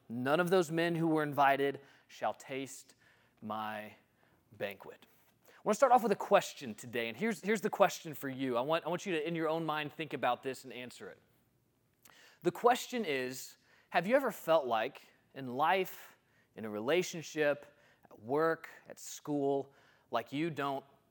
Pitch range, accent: 135-170 Hz, American